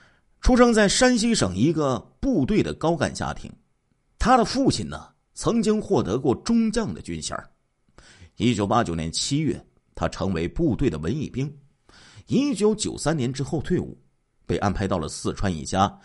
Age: 50-69